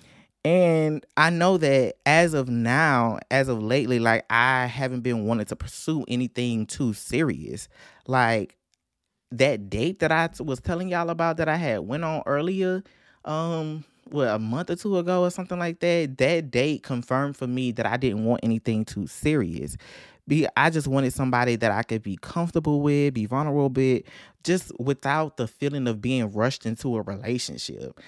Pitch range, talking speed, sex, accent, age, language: 125-160 Hz, 175 wpm, male, American, 20-39, English